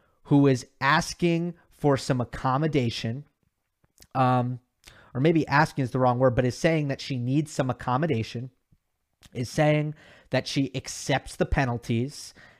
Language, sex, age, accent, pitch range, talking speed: English, male, 30-49, American, 125-155 Hz, 140 wpm